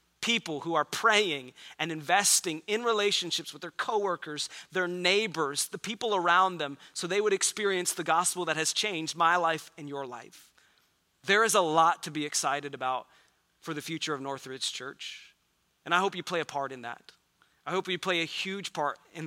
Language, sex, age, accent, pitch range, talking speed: English, male, 30-49, American, 145-185 Hz, 195 wpm